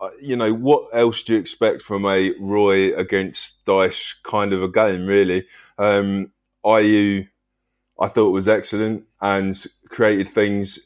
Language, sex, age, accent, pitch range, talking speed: English, male, 20-39, British, 100-110 Hz, 145 wpm